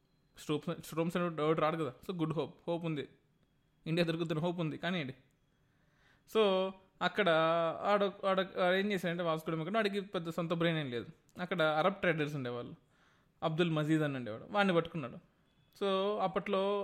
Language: Telugu